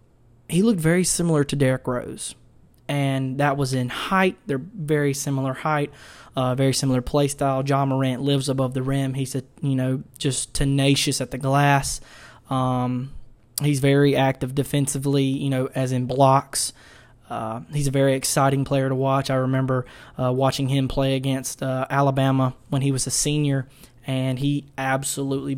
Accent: American